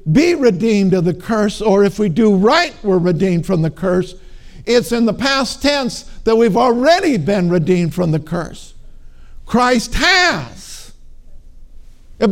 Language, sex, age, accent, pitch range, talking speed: English, male, 50-69, American, 170-235 Hz, 150 wpm